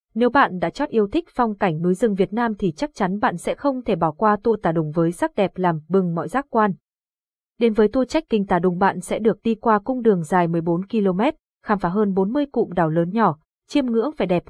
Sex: female